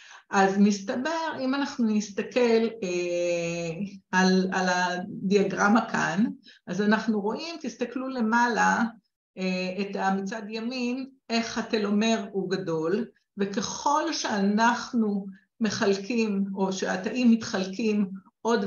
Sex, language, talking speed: female, Hebrew, 95 wpm